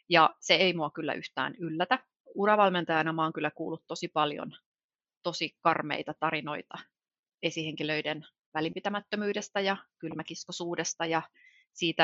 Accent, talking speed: native, 110 wpm